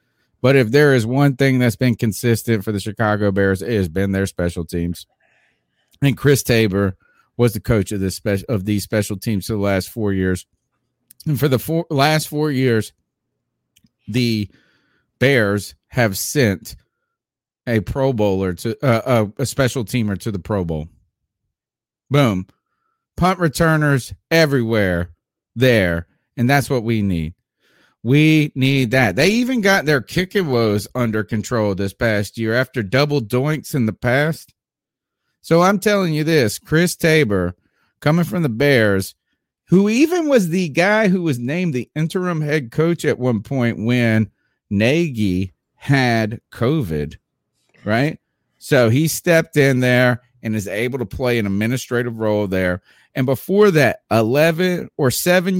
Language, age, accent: English, 40-59, American